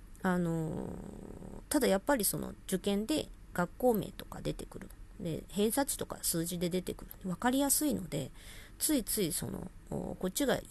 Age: 40-59